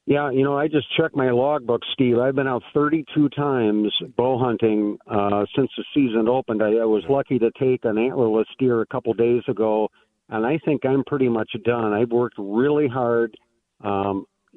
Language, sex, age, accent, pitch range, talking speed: English, male, 50-69, American, 105-125 Hz, 190 wpm